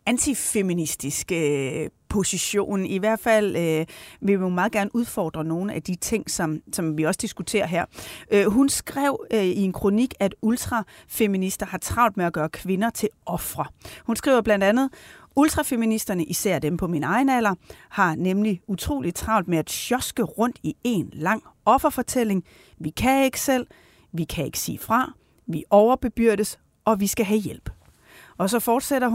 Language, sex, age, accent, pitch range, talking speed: Danish, female, 30-49, native, 170-225 Hz, 170 wpm